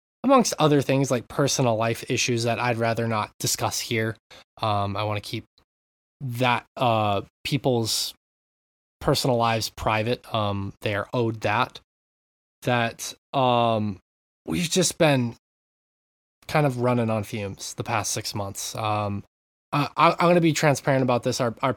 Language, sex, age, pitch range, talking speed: English, male, 20-39, 105-135 Hz, 150 wpm